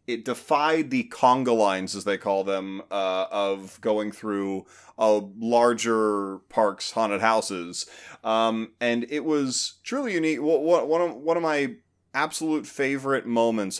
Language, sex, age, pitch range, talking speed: English, male, 30-49, 100-140 Hz, 150 wpm